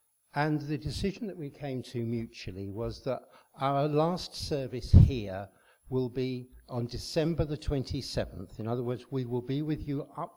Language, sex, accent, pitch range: English, male, British, 110-135 Hz